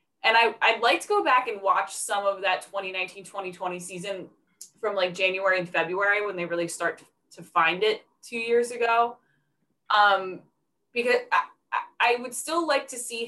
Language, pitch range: English, 175-235 Hz